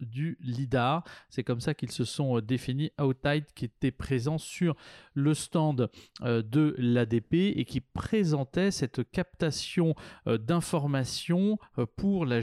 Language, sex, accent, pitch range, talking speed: French, male, French, 125-155 Hz, 125 wpm